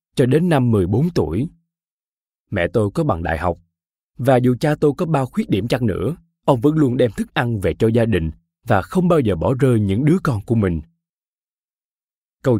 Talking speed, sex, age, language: 205 wpm, male, 20-39, Vietnamese